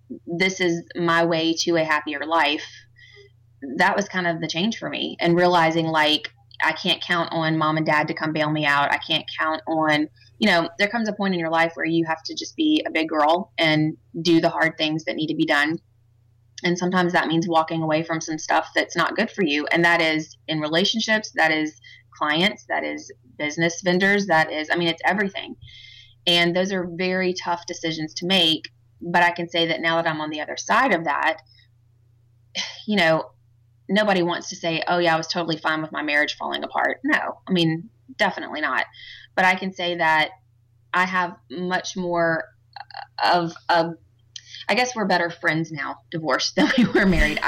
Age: 20-39